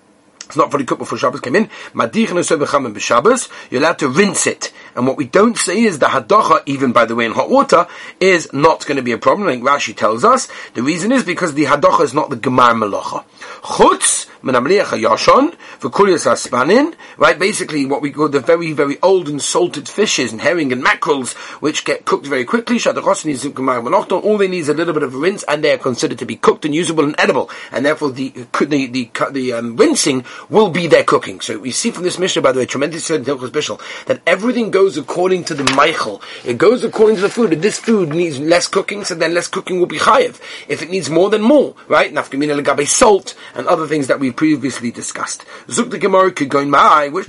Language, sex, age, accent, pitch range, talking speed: English, male, 40-59, British, 145-210 Hz, 210 wpm